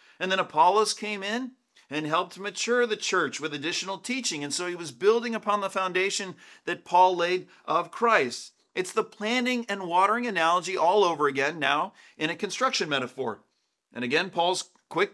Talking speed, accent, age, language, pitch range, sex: 175 wpm, American, 40-59, English, 145-215 Hz, male